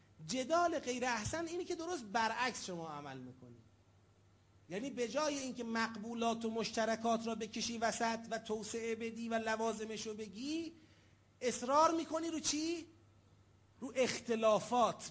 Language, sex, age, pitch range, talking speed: Urdu, male, 30-49, 205-270 Hz, 125 wpm